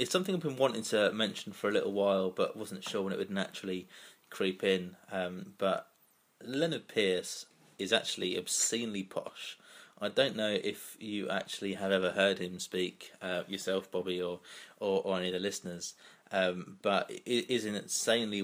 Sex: male